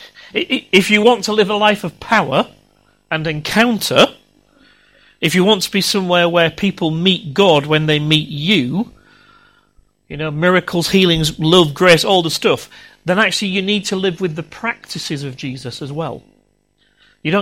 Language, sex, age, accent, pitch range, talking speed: English, male, 40-59, British, 150-195 Hz, 165 wpm